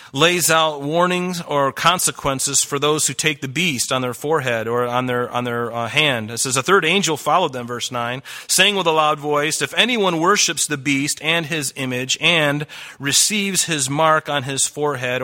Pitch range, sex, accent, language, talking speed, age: 130-160 Hz, male, American, English, 195 wpm, 30-49